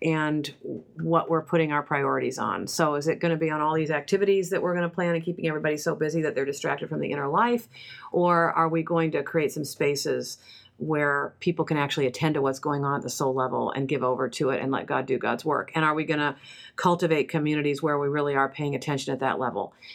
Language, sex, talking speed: English, female, 245 wpm